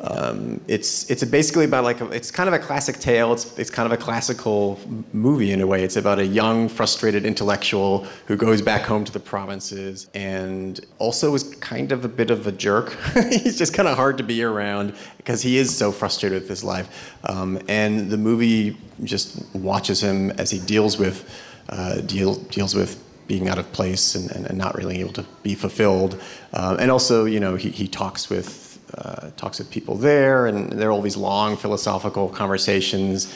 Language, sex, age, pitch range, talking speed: English, male, 30-49, 100-115 Hz, 200 wpm